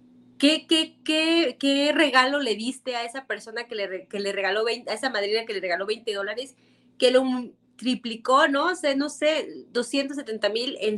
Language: Spanish